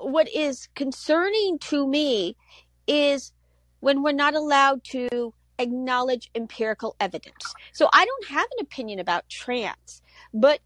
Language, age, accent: English, 50-69, American